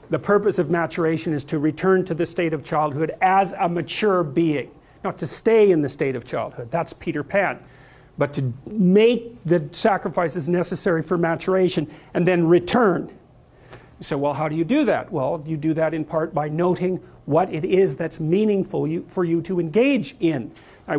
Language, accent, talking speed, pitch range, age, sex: English, American, 185 wpm, 160-200 Hz, 50-69, male